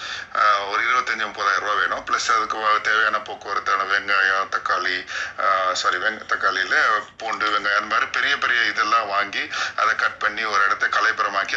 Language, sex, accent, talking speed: Tamil, male, native, 125 wpm